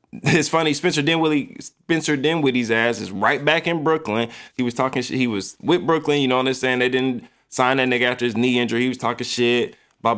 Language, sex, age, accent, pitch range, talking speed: English, male, 20-39, American, 110-130 Hz, 230 wpm